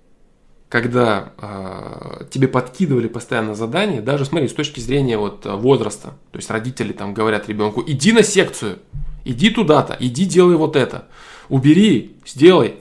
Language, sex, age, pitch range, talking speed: Russian, male, 20-39, 115-165 Hz, 135 wpm